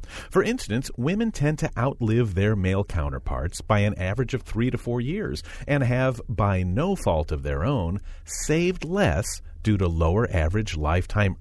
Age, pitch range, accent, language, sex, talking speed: 40-59, 85-135 Hz, American, English, male, 170 wpm